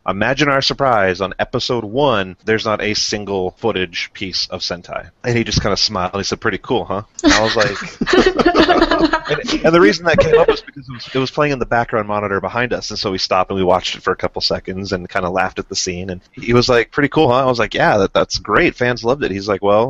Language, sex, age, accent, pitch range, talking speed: English, male, 30-49, American, 95-130 Hz, 260 wpm